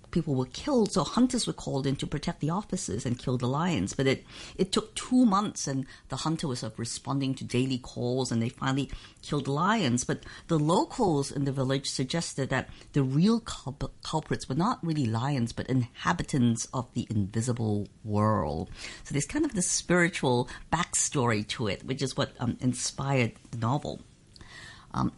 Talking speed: 185 wpm